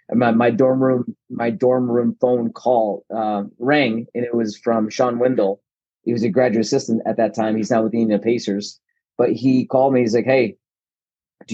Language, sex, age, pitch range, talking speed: English, male, 30-49, 115-125 Hz, 205 wpm